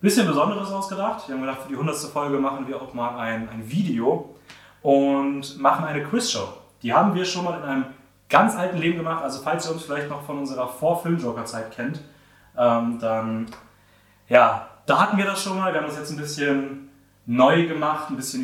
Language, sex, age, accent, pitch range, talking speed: German, male, 30-49, German, 125-160 Hz, 200 wpm